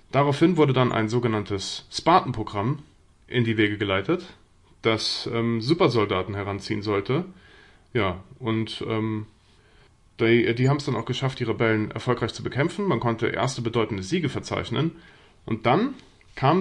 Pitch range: 110-145 Hz